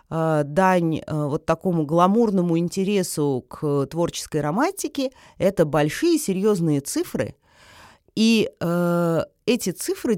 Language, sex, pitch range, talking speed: Russian, female, 170-230 Hz, 95 wpm